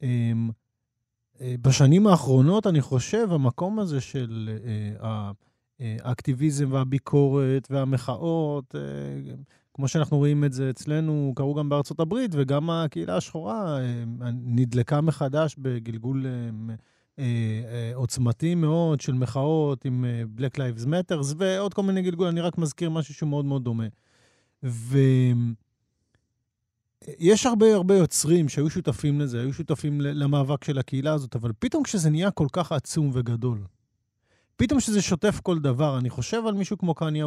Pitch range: 125-160 Hz